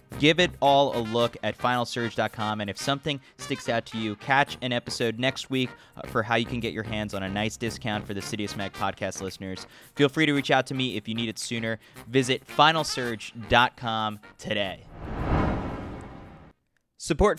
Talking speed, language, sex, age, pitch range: 180 wpm, English, male, 20-39, 110-135 Hz